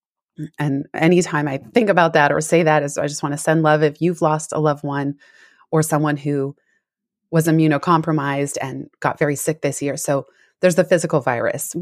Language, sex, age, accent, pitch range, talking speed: English, female, 20-39, American, 145-180 Hz, 195 wpm